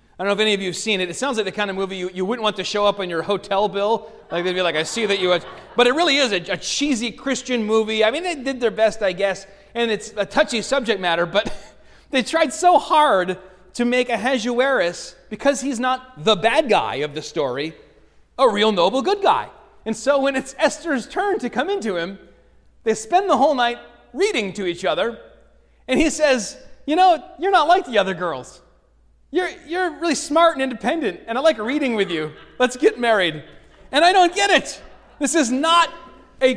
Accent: American